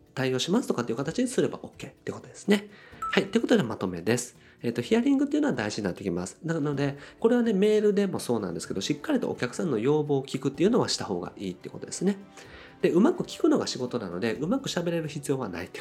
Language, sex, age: Japanese, male, 40-59